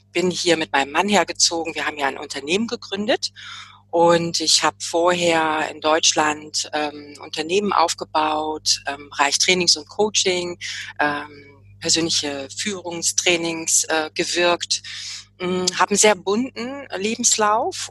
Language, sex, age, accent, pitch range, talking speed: German, female, 30-49, German, 150-190 Hz, 120 wpm